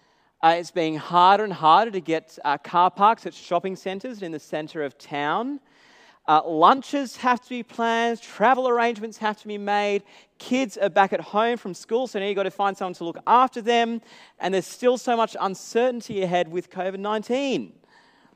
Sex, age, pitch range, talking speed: male, 30-49, 155-225 Hz, 195 wpm